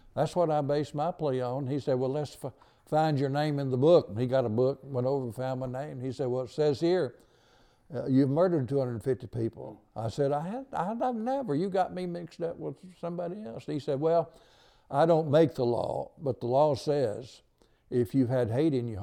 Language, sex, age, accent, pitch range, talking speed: English, male, 60-79, American, 125-145 Hz, 225 wpm